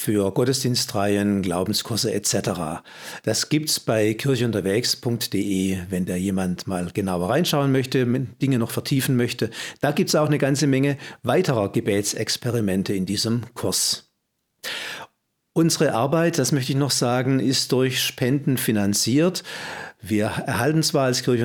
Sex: male